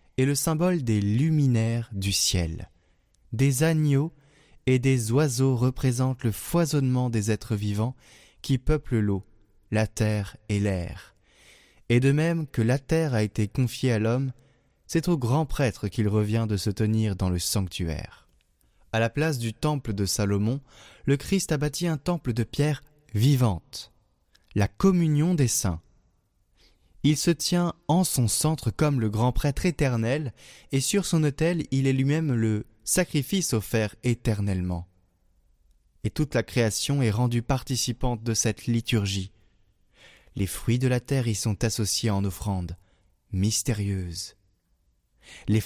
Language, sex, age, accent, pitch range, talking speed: French, male, 20-39, French, 100-140 Hz, 145 wpm